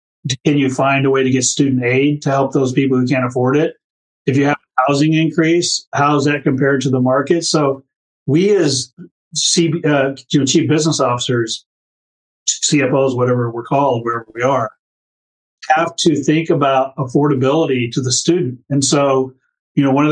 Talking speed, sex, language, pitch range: 175 wpm, male, English, 130-150 Hz